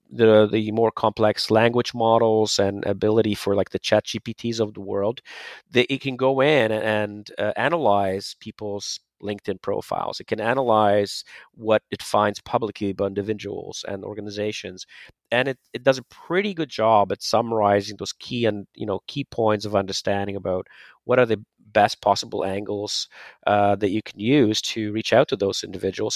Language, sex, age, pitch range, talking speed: English, male, 30-49, 100-115 Hz, 170 wpm